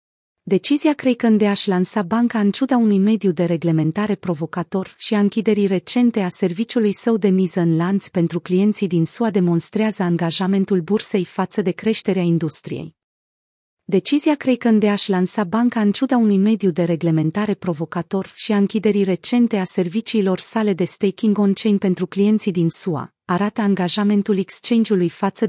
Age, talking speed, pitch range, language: 30-49, 160 wpm, 180-220 Hz, Romanian